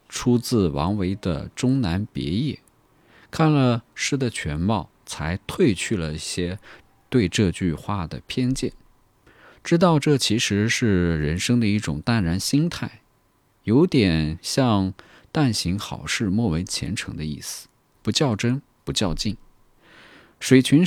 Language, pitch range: Chinese, 80-115 Hz